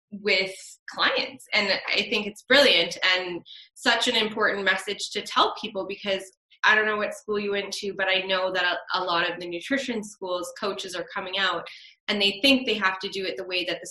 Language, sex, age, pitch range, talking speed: English, female, 20-39, 180-210 Hz, 220 wpm